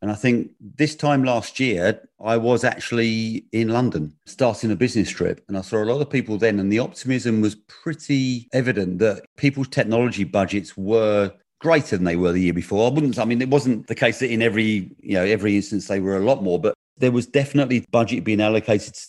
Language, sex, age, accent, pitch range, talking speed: English, male, 40-59, British, 95-120 Hz, 220 wpm